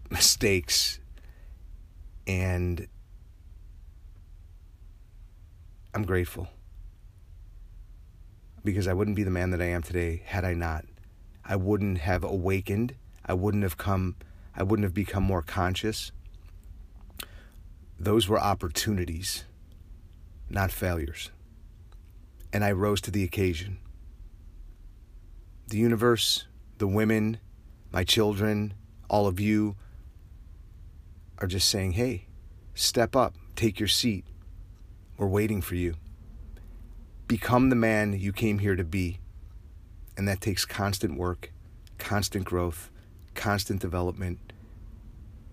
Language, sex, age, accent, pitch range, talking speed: English, male, 30-49, American, 85-100 Hz, 105 wpm